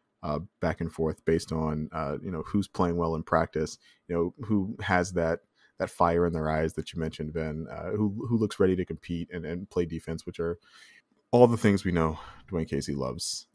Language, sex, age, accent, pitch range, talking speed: English, male, 20-39, American, 85-115 Hz, 215 wpm